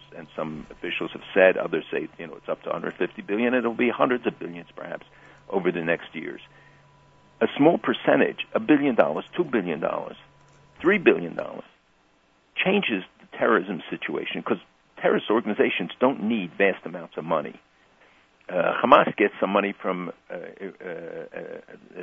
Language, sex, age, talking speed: English, male, 60-79, 150 wpm